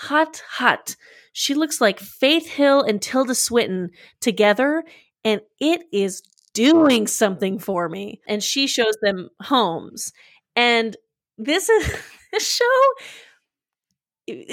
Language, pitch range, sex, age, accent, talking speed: English, 195-250 Hz, female, 20-39, American, 120 wpm